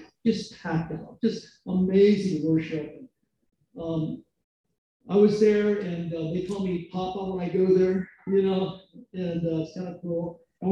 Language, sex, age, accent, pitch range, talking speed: English, male, 40-59, American, 165-215 Hz, 160 wpm